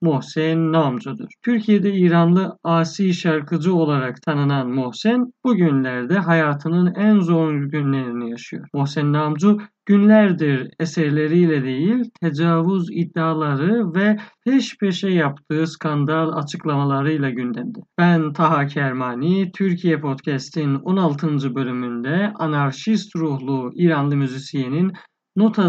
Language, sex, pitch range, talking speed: Persian, male, 140-185 Hz, 95 wpm